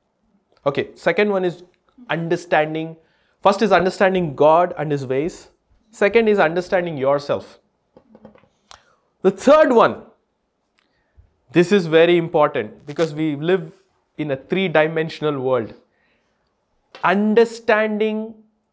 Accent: Indian